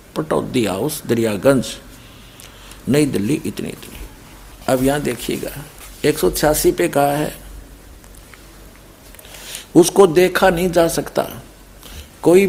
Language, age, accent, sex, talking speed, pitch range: Hindi, 60-79, native, male, 105 wpm, 120-165 Hz